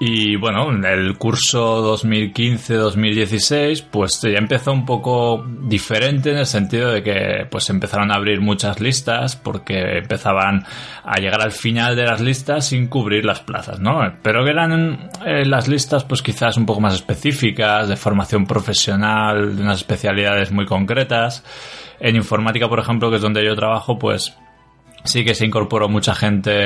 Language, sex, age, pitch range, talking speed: Spanish, male, 20-39, 100-120 Hz, 165 wpm